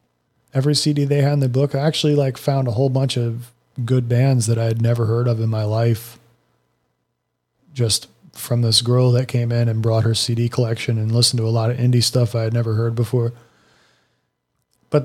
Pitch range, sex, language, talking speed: 115-135 Hz, male, English, 205 wpm